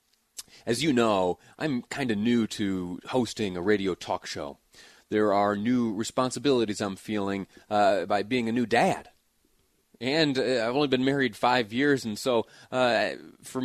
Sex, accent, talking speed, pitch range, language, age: male, American, 165 wpm, 110-130 Hz, English, 30-49